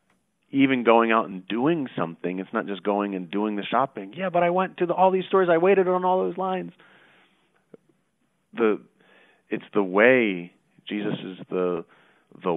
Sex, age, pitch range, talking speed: male, 40-59, 90-110 Hz, 175 wpm